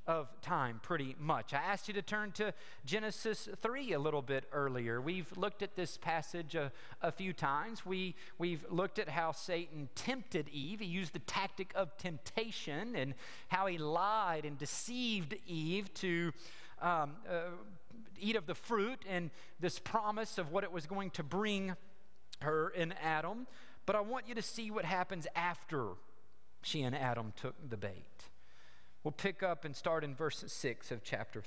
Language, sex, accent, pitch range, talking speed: English, male, American, 145-200 Hz, 175 wpm